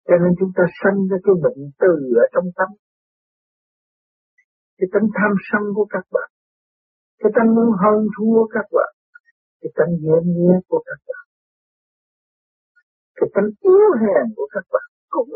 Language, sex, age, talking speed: Vietnamese, male, 50-69, 160 wpm